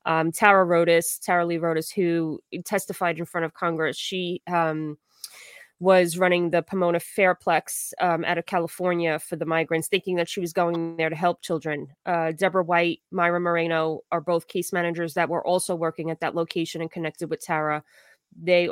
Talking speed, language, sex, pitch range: 180 wpm, English, female, 165-195 Hz